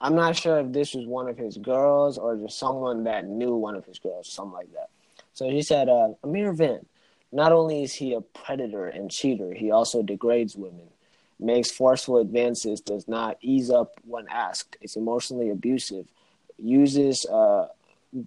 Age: 20-39